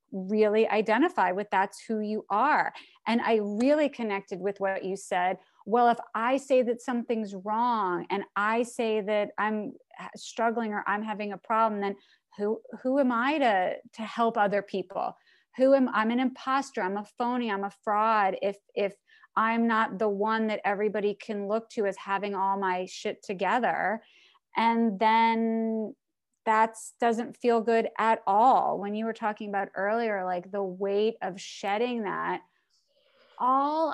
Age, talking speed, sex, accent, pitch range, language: 30-49, 165 wpm, female, American, 200-235 Hz, English